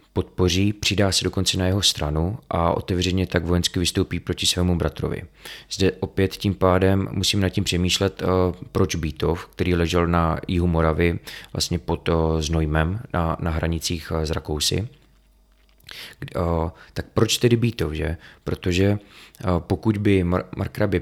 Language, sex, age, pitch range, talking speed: Czech, male, 20-39, 85-100 Hz, 150 wpm